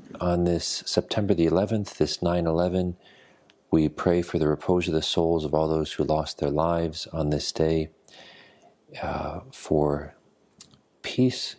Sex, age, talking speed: male, 40-59, 150 wpm